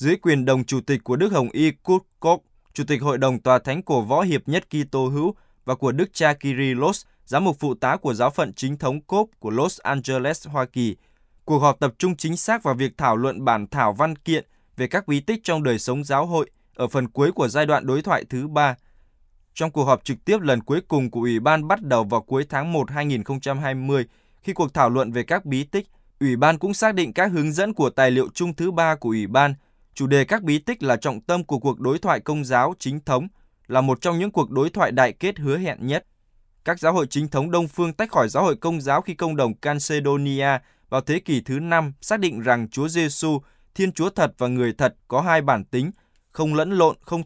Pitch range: 130-165 Hz